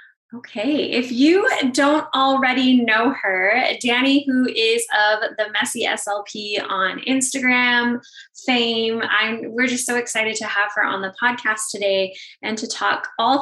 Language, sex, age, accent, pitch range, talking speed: English, female, 10-29, American, 205-255 Hz, 145 wpm